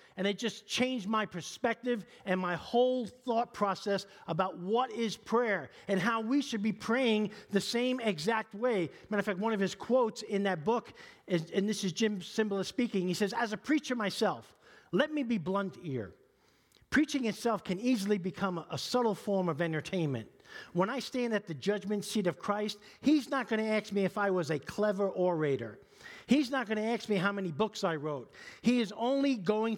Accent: American